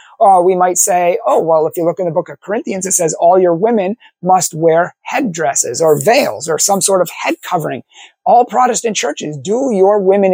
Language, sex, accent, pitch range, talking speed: English, male, American, 170-225 Hz, 210 wpm